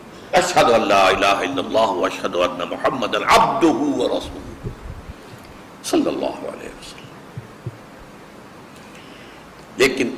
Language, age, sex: Urdu, 60-79, male